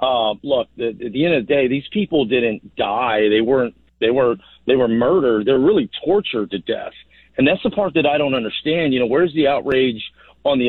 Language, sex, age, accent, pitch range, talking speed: English, male, 50-69, American, 125-165 Hz, 235 wpm